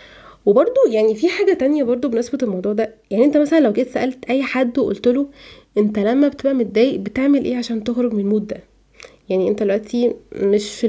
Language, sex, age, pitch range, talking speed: Arabic, female, 20-39, 210-270 Hz, 195 wpm